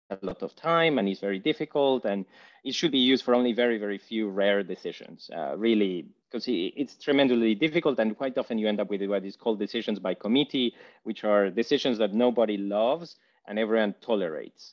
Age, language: 30-49, English